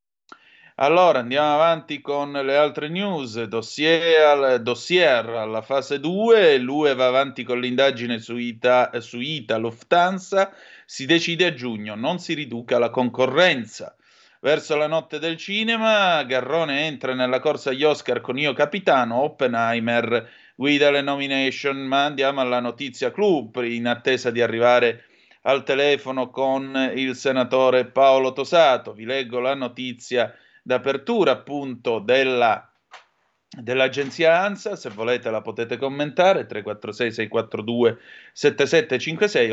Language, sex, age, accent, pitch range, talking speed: Italian, male, 30-49, native, 120-150 Hz, 120 wpm